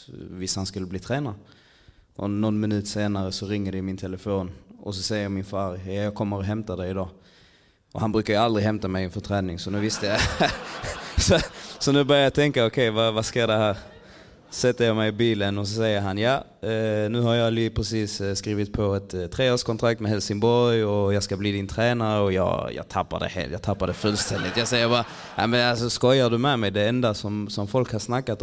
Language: Danish